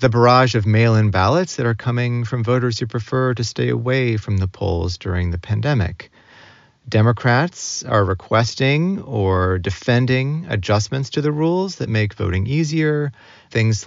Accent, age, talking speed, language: American, 30-49, 150 wpm, English